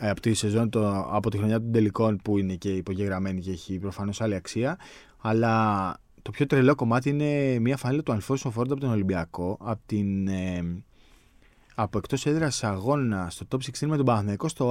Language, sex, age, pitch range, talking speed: Greek, male, 20-39, 95-120 Hz, 175 wpm